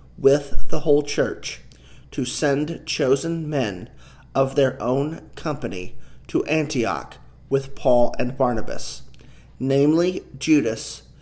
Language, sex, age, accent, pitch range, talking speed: English, male, 40-59, American, 125-150 Hz, 105 wpm